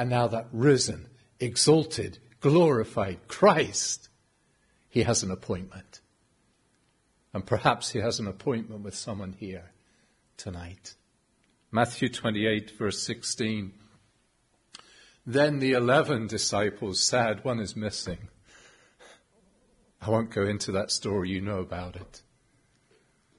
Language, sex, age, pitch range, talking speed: English, male, 50-69, 110-160 Hz, 110 wpm